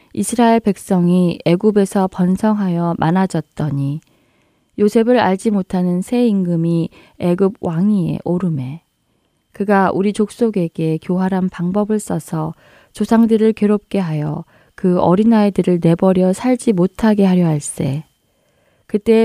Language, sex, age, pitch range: Korean, female, 20-39, 165-205 Hz